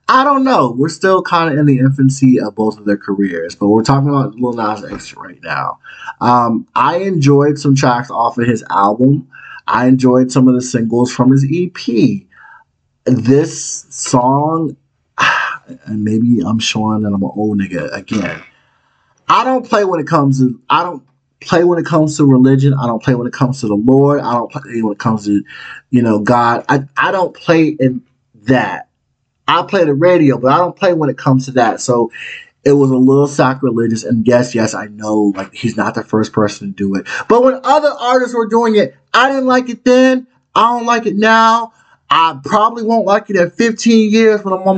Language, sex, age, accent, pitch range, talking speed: English, male, 30-49, American, 125-205 Hz, 205 wpm